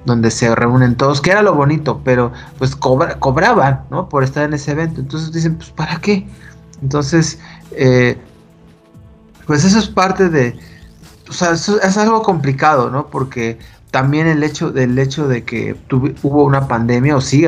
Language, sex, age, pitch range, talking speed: Spanish, male, 30-49, 120-155 Hz, 175 wpm